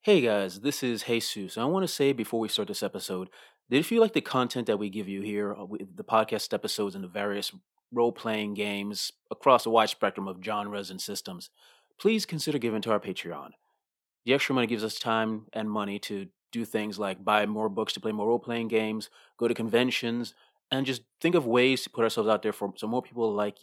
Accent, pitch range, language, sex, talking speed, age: American, 105-130 Hz, English, male, 210 wpm, 30-49